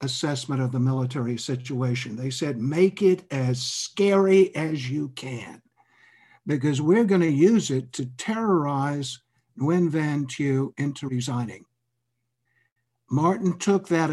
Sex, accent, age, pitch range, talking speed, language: male, American, 60-79, 120-155 Hz, 125 wpm, English